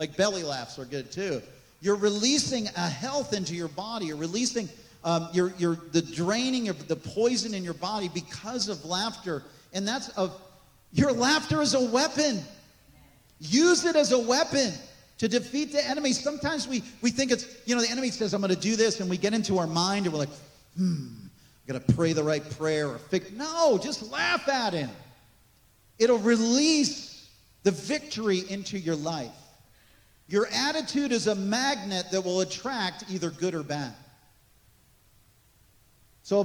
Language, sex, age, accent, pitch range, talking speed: English, male, 40-59, American, 160-240 Hz, 170 wpm